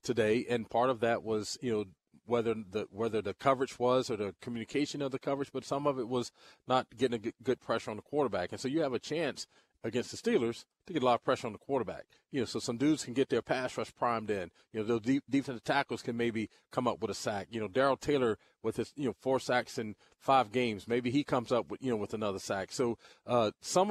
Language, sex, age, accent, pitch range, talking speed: English, male, 40-59, American, 115-145 Hz, 255 wpm